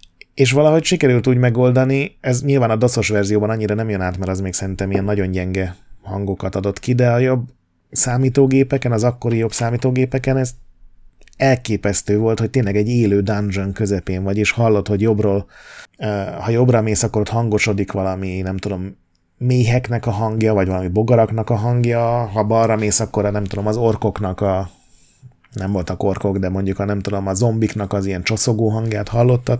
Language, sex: Hungarian, male